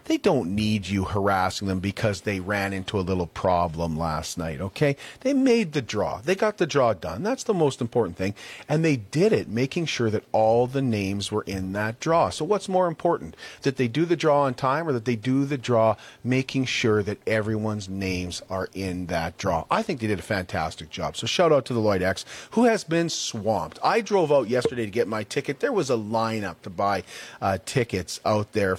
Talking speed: 220 wpm